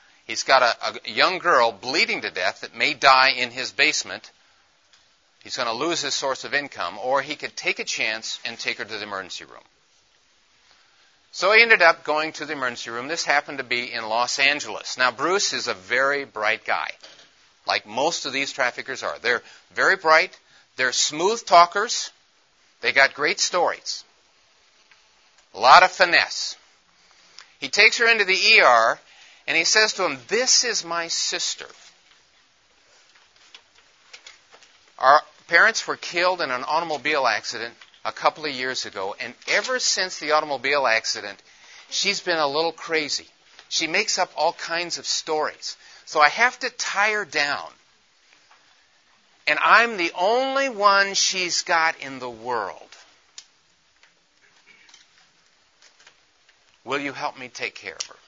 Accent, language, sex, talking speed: American, English, male, 155 wpm